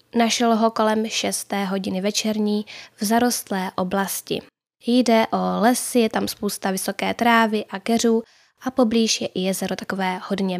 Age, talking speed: 10-29, 145 wpm